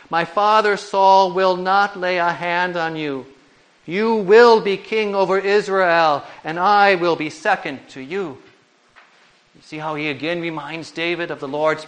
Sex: male